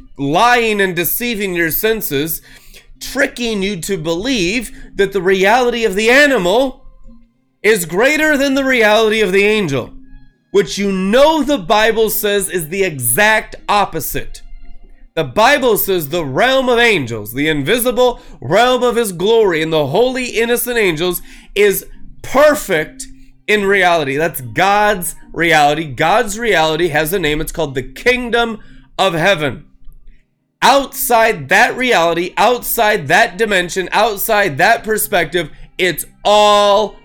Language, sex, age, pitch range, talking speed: English, male, 30-49, 155-225 Hz, 130 wpm